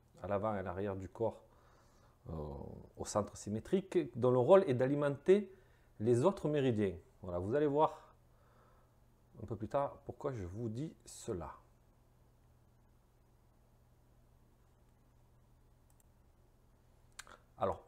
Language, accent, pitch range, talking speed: French, French, 95-150 Hz, 110 wpm